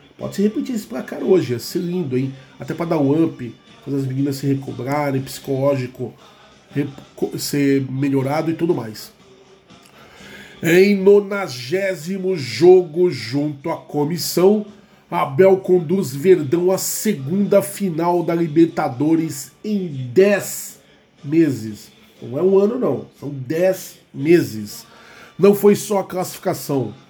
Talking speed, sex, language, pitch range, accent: 125 wpm, male, Portuguese, 140-180 Hz, Brazilian